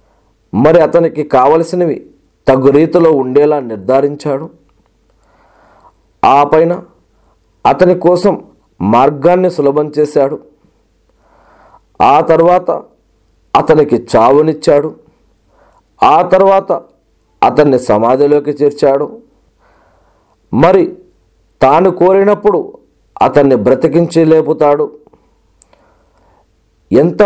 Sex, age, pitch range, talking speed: male, 40-59, 135-175 Hz, 65 wpm